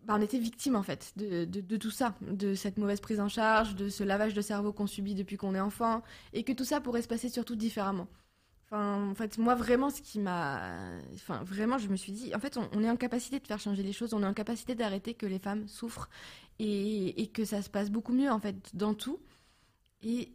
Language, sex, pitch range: French, female, 200-240 Hz